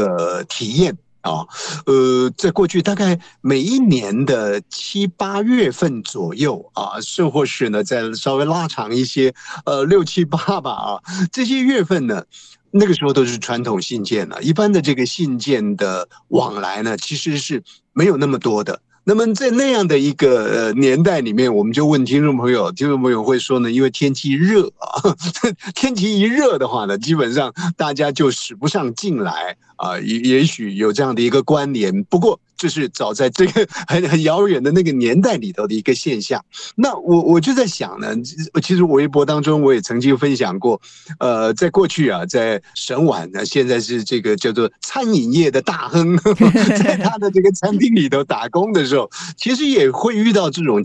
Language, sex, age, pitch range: Chinese, male, 50-69, 135-195 Hz